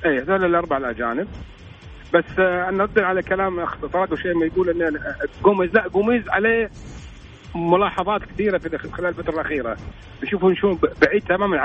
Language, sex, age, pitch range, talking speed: English, male, 40-59, 140-190 Hz, 130 wpm